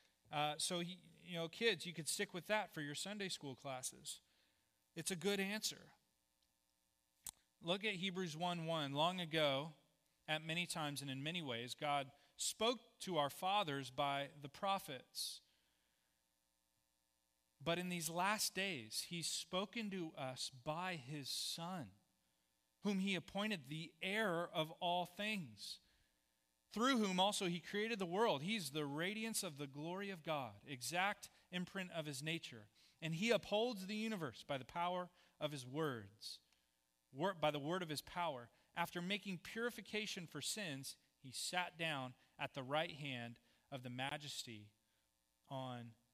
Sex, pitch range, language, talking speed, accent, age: male, 130-185 Hz, English, 150 wpm, American, 40-59